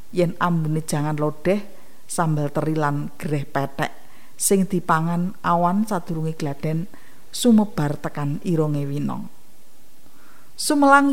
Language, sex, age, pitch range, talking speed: Indonesian, female, 50-69, 155-210 Hz, 100 wpm